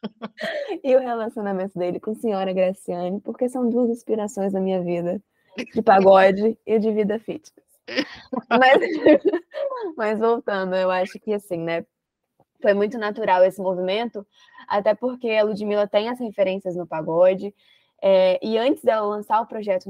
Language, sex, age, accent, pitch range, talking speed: Portuguese, female, 10-29, Brazilian, 185-230 Hz, 150 wpm